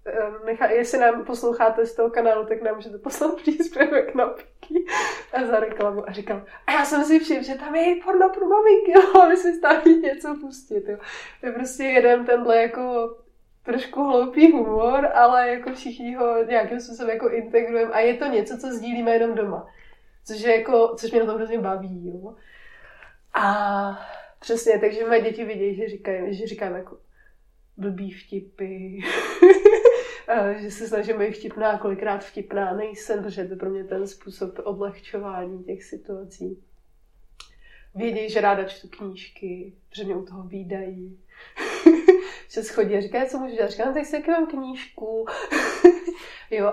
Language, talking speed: Czech, 160 wpm